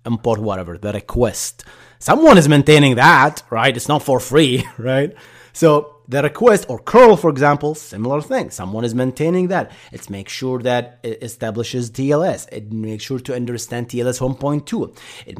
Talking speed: 165 wpm